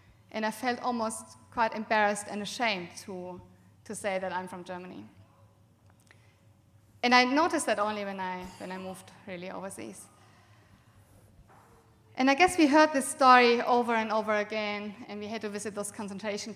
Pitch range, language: 175-235 Hz, English